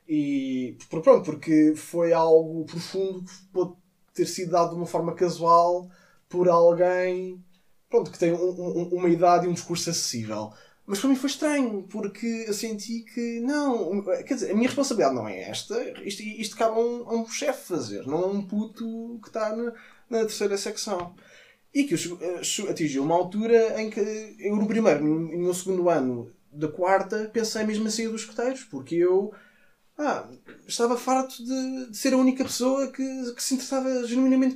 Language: Portuguese